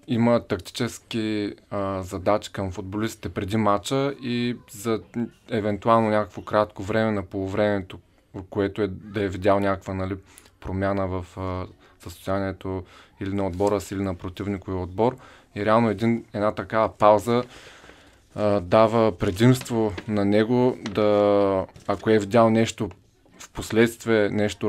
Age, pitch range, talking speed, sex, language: 20-39, 95-110 Hz, 130 wpm, male, Bulgarian